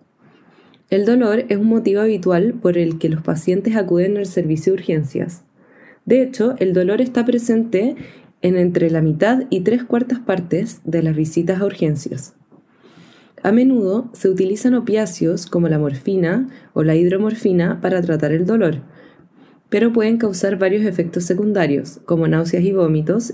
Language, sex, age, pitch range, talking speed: Spanish, female, 20-39, 175-225 Hz, 155 wpm